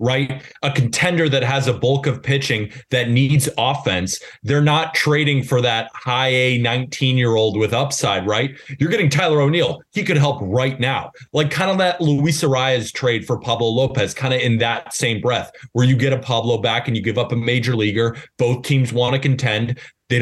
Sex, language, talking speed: male, English, 205 wpm